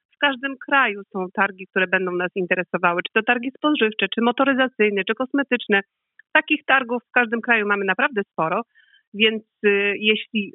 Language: Polish